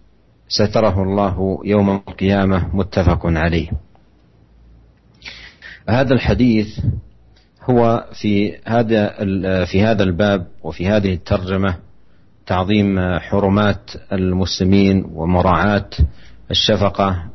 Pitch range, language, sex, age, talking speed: 90-105 Hz, Indonesian, male, 50-69, 75 wpm